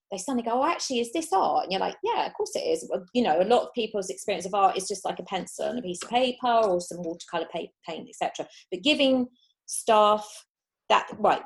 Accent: British